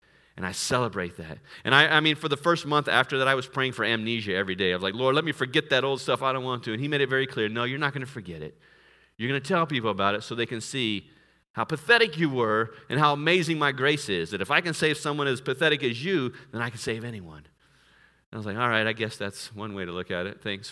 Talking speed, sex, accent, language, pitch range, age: 290 wpm, male, American, English, 110-150 Hz, 40-59